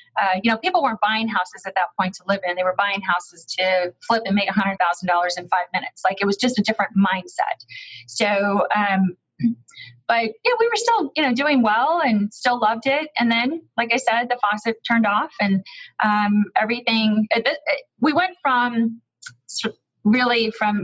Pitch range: 195-235 Hz